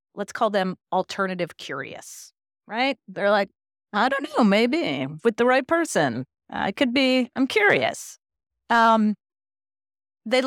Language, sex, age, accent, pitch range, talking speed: English, female, 40-59, American, 170-255 Hz, 130 wpm